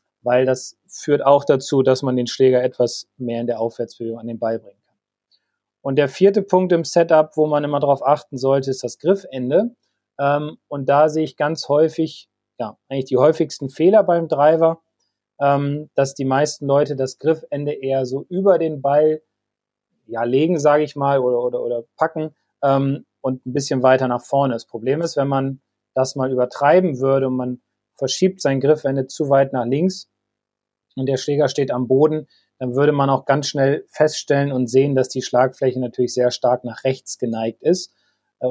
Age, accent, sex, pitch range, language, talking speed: 30-49, German, male, 125-150 Hz, German, 185 wpm